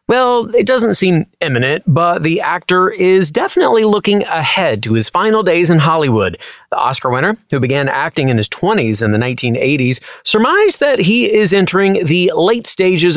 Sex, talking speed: male, 175 wpm